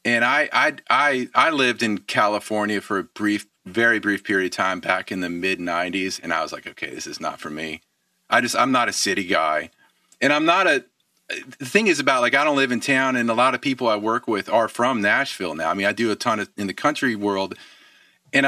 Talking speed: 245 wpm